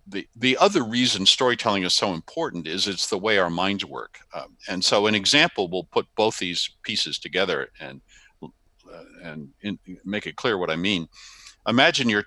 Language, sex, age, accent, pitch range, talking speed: English, male, 50-69, American, 85-115 Hz, 180 wpm